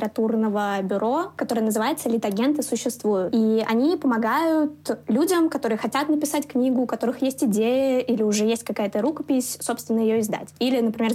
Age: 20-39